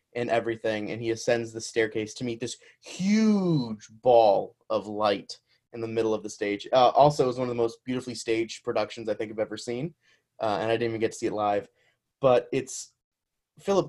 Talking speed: 210 wpm